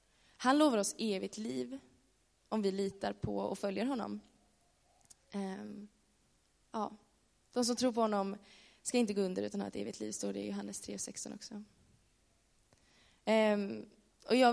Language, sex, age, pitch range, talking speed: Swedish, female, 20-39, 185-225 Hz, 130 wpm